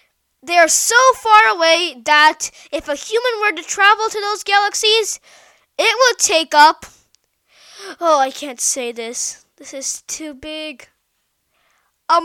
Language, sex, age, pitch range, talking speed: English, female, 10-29, 295-385 Hz, 140 wpm